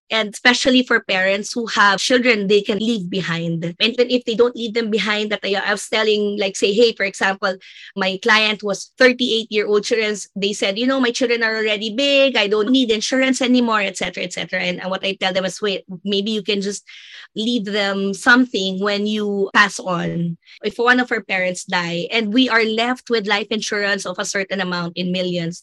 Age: 20-39